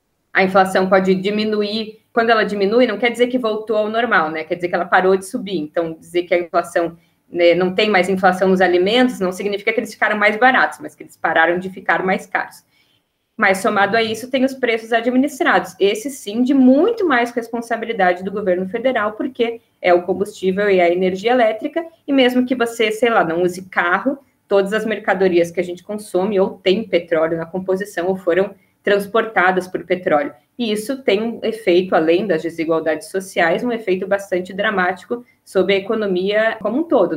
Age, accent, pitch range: 20-39, Brazilian, 180-225 Hz